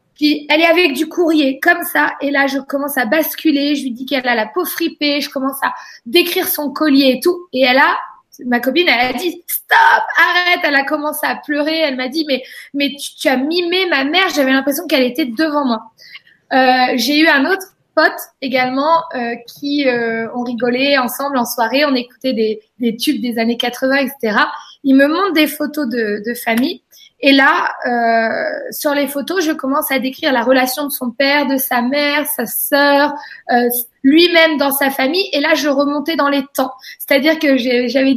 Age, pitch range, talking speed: 20-39, 255-310 Hz, 210 wpm